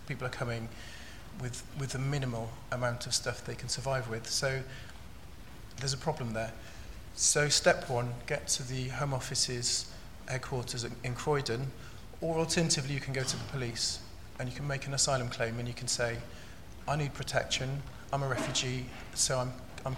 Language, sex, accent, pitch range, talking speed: English, male, British, 115-140 Hz, 175 wpm